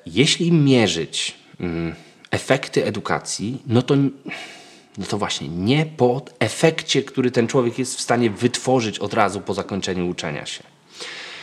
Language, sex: Polish, male